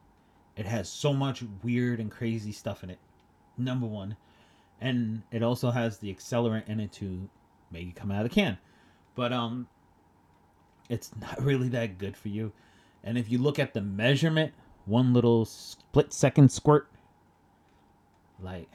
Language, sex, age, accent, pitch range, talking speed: English, male, 30-49, American, 95-120 Hz, 155 wpm